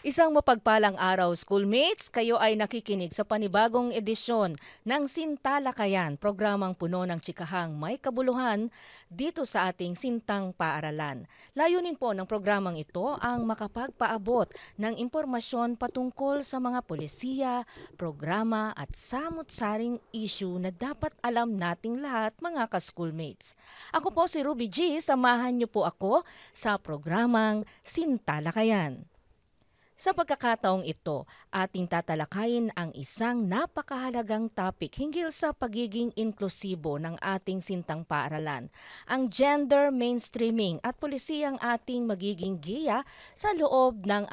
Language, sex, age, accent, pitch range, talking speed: Filipino, female, 40-59, native, 185-255 Hz, 120 wpm